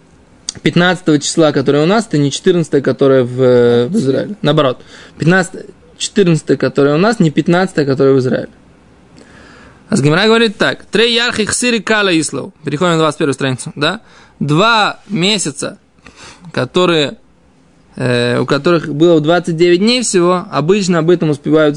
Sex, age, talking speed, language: male, 20-39, 130 wpm, Russian